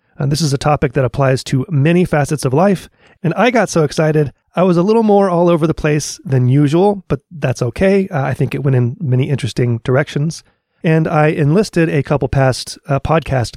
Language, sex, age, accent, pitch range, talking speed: English, male, 30-49, American, 130-170 Hz, 215 wpm